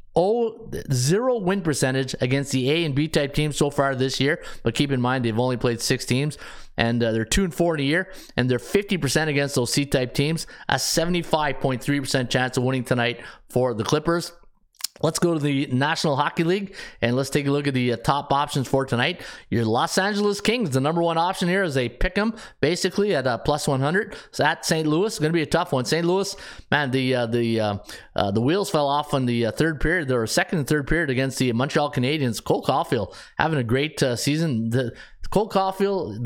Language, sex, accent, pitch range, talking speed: English, male, American, 125-165 Hz, 220 wpm